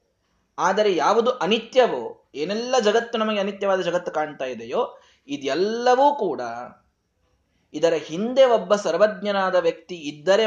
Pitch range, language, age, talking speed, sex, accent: 160-230 Hz, Kannada, 20-39, 105 wpm, male, native